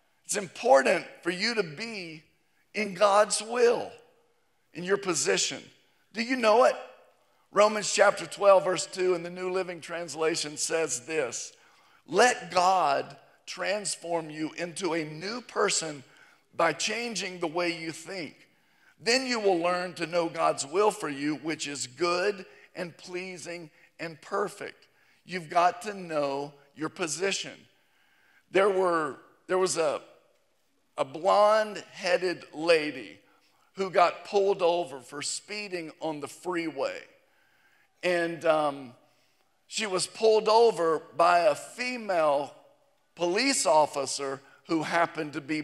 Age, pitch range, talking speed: 50-69, 160-200 Hz, 130 wpm